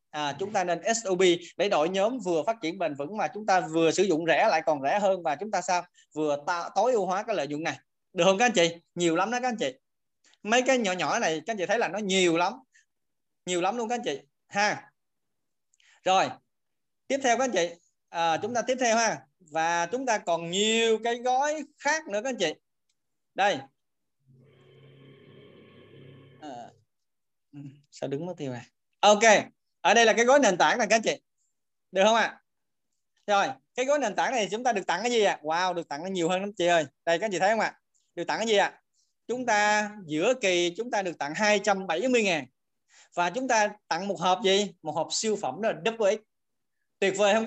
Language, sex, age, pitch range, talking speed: Vietnamese, male, 20-39, 165-220 Hz, 225 wpm